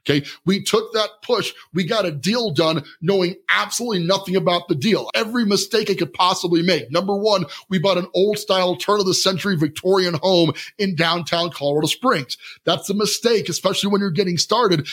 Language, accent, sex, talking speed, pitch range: English, American, male, 190 wpm, 170-210 Hz